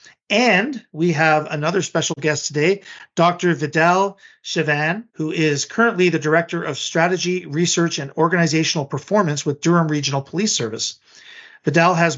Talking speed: 140 wpm